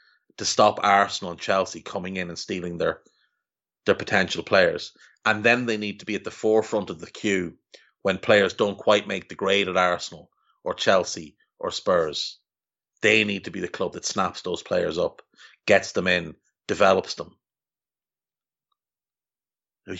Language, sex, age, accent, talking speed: English, male, 30-49, Irish, 165 wpm